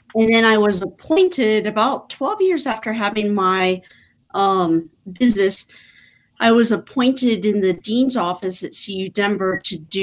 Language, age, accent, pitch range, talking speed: English, 40-59, American, 180-215 Hz, 150 wpm